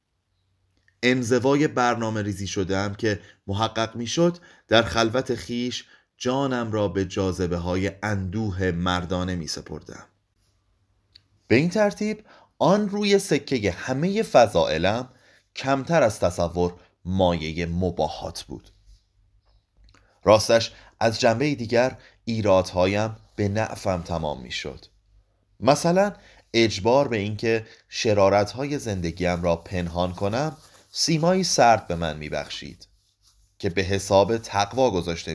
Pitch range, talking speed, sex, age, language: 95-125 Hz, 110 wpm, male, 30-49, Persian